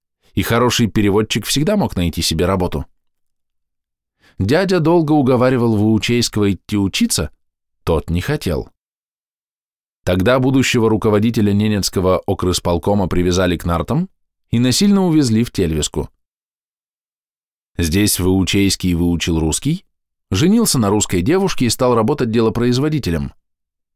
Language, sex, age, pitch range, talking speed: Russian, male, 20-39, 90-125 Hz, 105 wpm